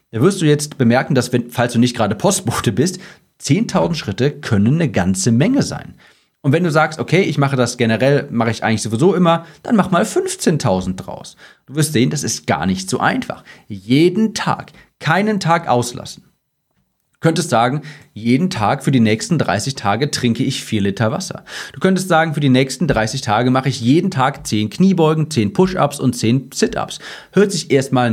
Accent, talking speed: German, 190 wpm